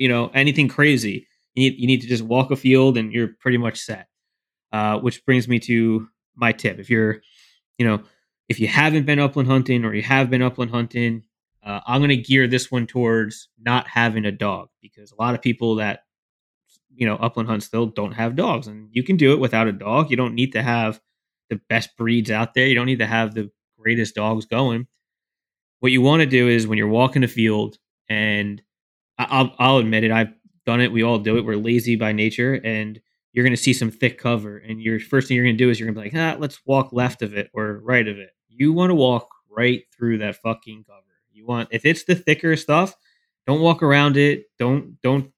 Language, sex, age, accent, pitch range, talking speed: English, male, 20-39, American, 110-130 Hz, 230 wpm